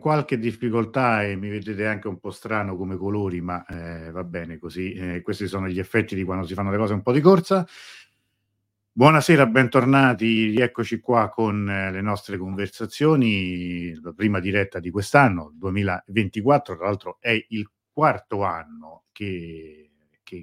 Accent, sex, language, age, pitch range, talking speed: native, male, Italian, 50-69, 90-110 Hz, 160 wpm